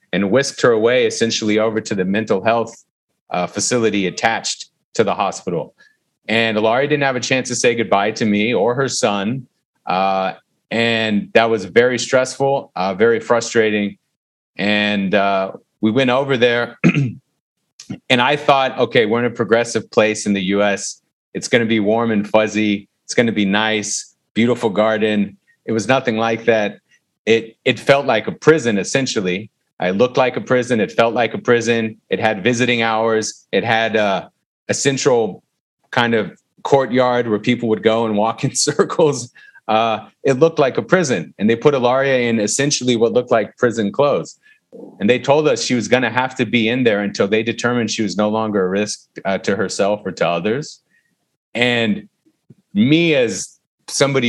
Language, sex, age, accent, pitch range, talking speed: English, male, 30-49, American, 105-130 Hz, 180 wpm